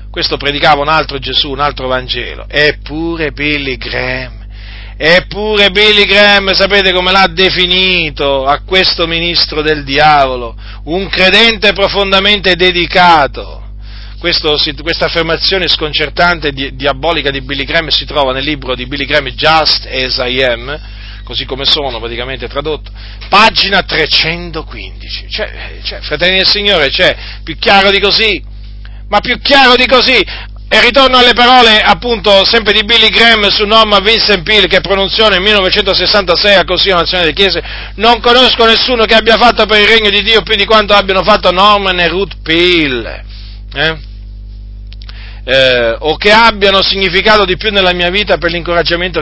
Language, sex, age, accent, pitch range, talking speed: Italian, male, 40-59, native, 130-200 Hz, 150 wpm